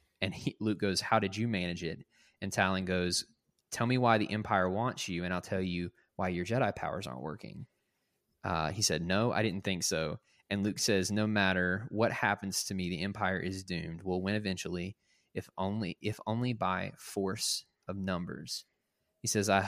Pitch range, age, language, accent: 95-110 Hz, 20-39, English, American